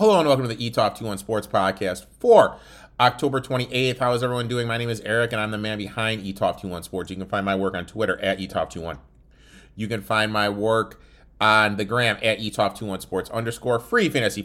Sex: male